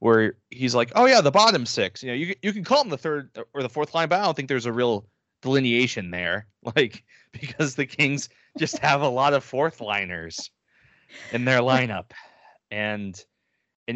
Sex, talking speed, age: male, 200 wpm, 30-49